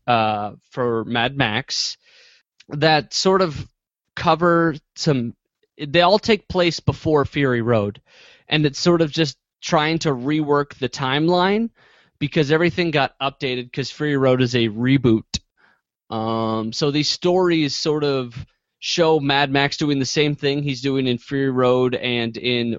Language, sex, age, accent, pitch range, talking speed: English, male, 30-49, American, 115-150 Hz, 145 wpm